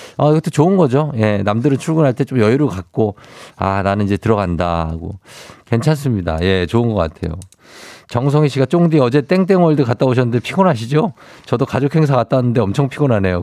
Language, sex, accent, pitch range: Korean, male, native, 100-145 Hz